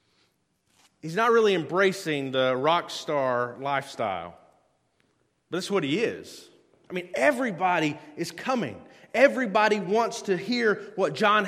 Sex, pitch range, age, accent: male, 195-245 Hz, 30-49, American